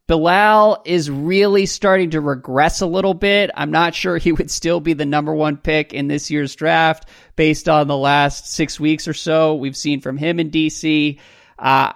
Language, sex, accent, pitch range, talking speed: English, male, American, 135-165 Hz, 195 wpm